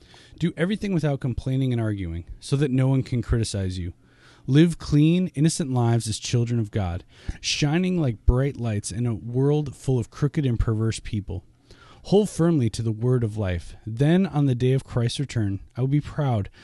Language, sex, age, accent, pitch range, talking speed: English, male, 20-39, American, 110-140 Hz, 190 wpm